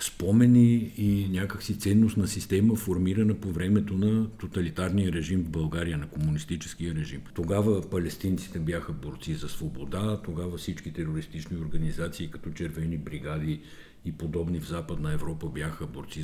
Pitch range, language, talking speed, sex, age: 80-105 Hz, Bulgarian, 135 wpm, male, 60-79